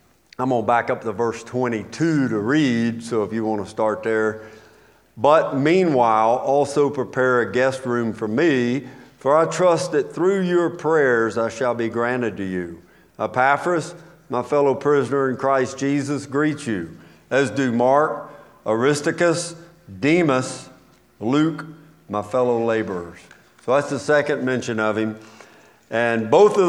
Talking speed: 150 wpm